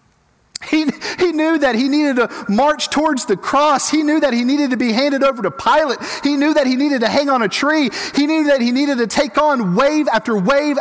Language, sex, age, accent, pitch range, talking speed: English, male, 40-59, American, 160-255 Hz, 240 wpm